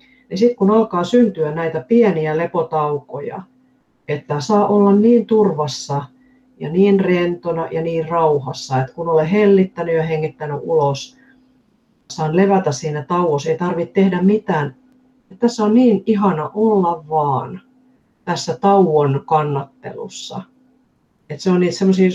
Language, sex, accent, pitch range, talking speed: Finnish, female, native, 155-205 Hz, 125 wpm